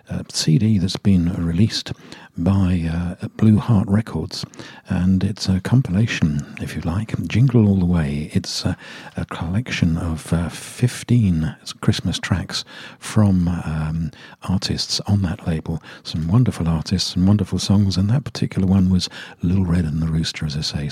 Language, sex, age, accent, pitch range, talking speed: English, male, 50-69, British, 85-105 Hz, 160 wpm